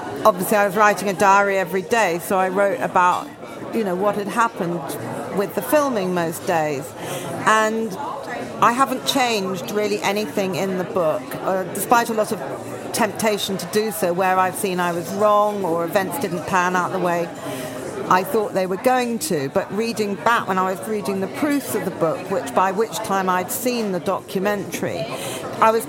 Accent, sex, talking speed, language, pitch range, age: British, female, 190 wpm, English, 175-215 Hz, 40-59